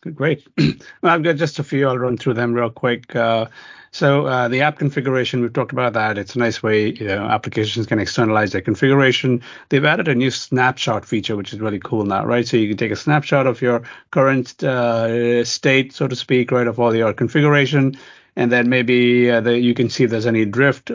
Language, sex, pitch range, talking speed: English, male, 110-125 Hz, 215 wpm